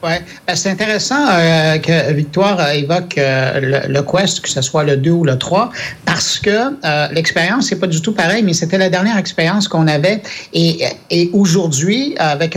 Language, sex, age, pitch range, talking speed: French, male, 60-79, 150-185 Hz, 190 wpm